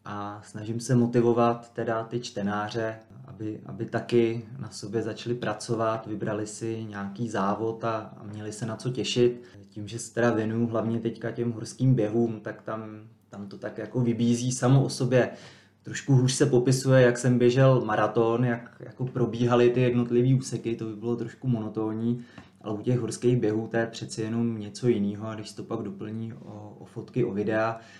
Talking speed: 180 wpm